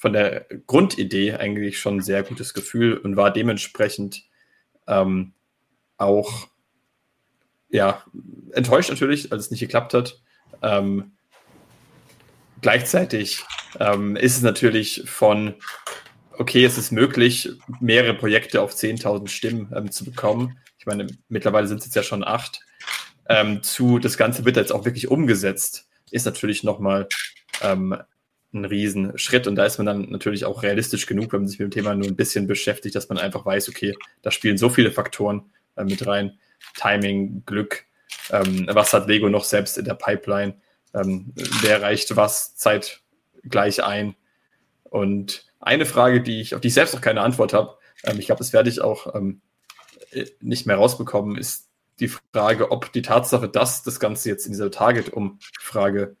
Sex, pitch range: male, 100-115 Hz